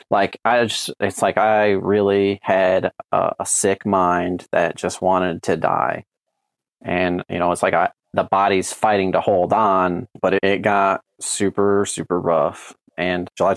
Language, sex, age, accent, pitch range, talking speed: English, male, 30-49, American, 95-110 Hz, 170 wpm